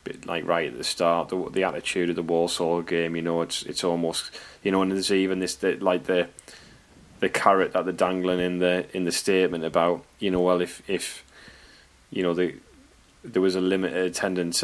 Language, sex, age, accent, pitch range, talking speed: English, male, 10-29, British, 85-95 Hz, 210 wpm